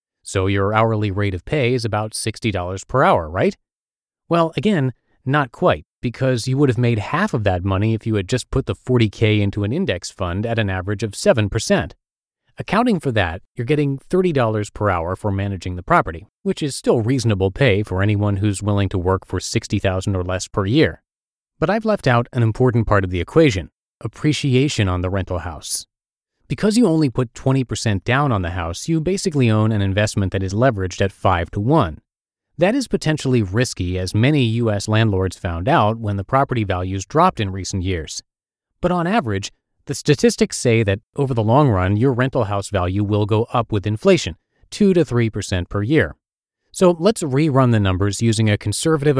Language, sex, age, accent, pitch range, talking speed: English, male, 30-49, American, 100-135 Hz, 190 wpm